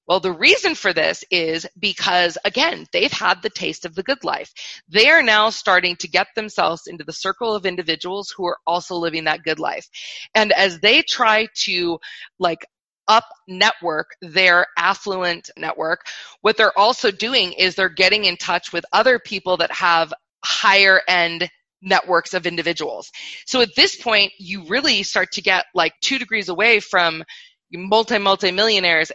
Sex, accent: female, American